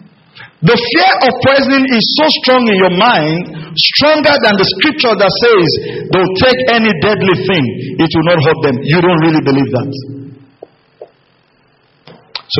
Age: 50-69